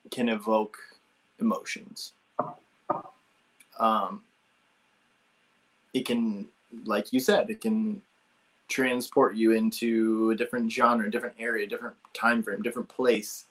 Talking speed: 105 wpm